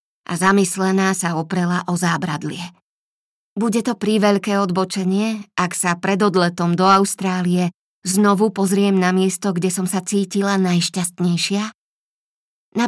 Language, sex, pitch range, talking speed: Slovak, female, 175-210 Hz, 125 wpm